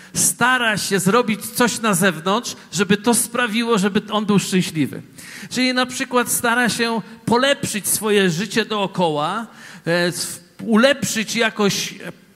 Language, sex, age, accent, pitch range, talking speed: Polish, male, 50-69, native, 190-235 Hz, 115 wpm